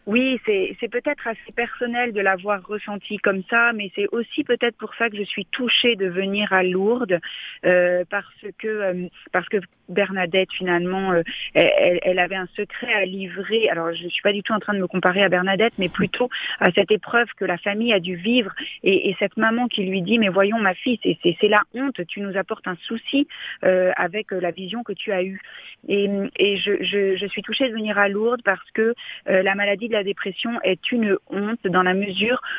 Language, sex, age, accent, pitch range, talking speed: French, female, 40-59, French, 190-225 Hz, 225 wpm